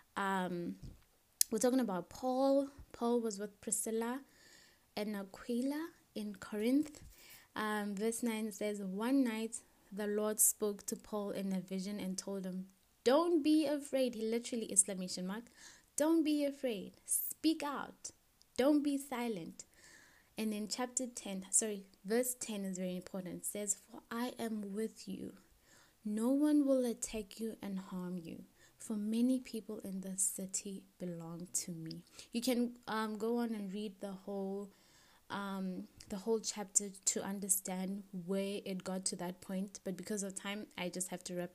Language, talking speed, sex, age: English, 155 wpm, female, 20-39